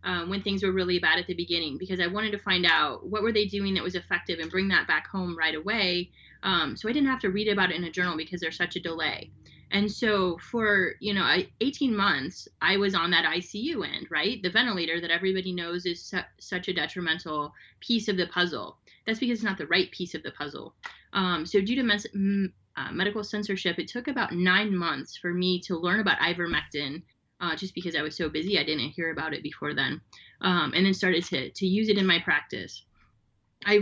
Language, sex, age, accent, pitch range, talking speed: English, female, 20-39, American, 170-200 Hz, 225 wpm